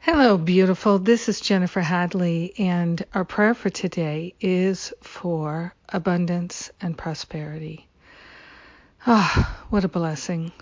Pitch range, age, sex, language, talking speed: 175-195 Hz, 50-69, female, English, 115 wpm